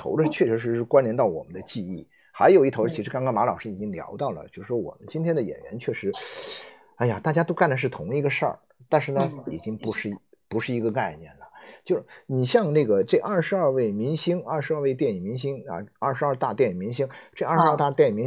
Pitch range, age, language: 115-175 Hz, 50-69, Chinese